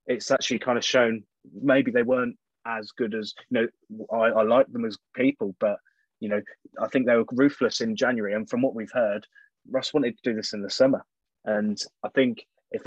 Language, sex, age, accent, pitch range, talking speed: English, male, 20-39, British, 110-155 Hz, 215 wpm